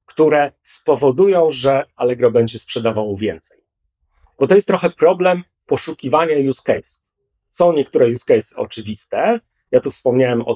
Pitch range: 115-145 Hz